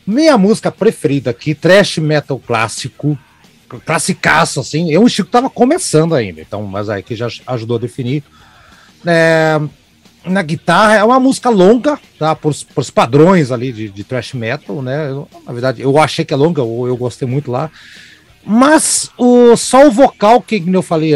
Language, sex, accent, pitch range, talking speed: Portuguese, male, Brazilian, 140-205 Hz, 175 wpm